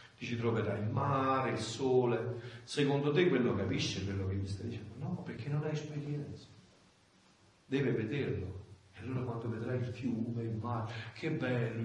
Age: 40-59